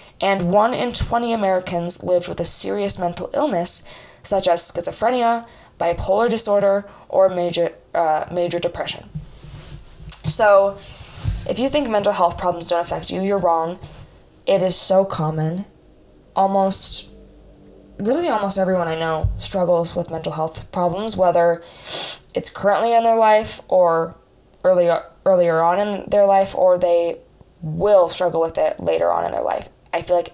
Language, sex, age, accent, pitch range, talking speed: English, female, 10-29, American, 165-195 Hz, 150 wpm